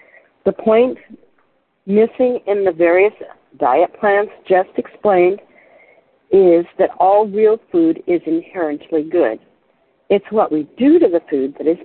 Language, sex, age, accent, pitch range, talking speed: English, female, 60-79, American, 175-240 Hz, 135 wpm